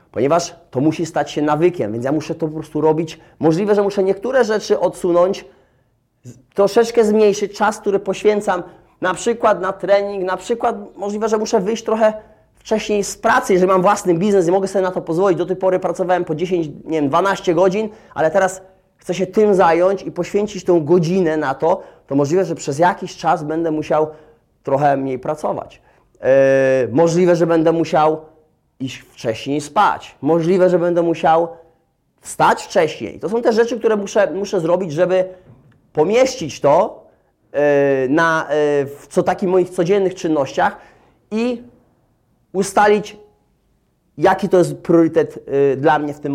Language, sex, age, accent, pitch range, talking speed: Polish, male, 30-49, native, 155-200 Hz, 155 wpm